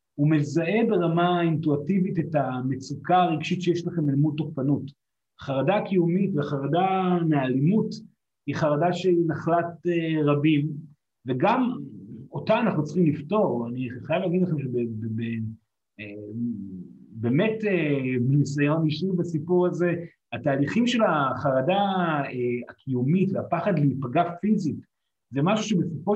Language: Hebrew